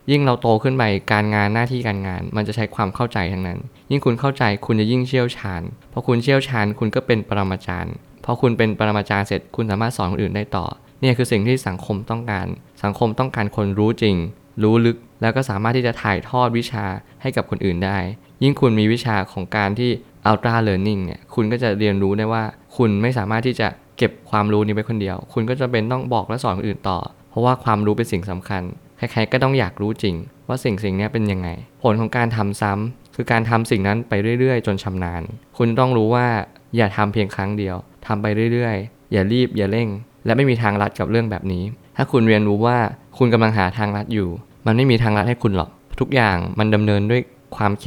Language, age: Thai, 20-39